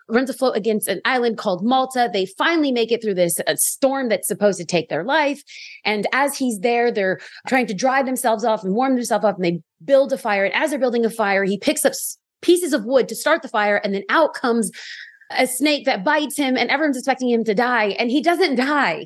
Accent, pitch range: American, 210-275 Hz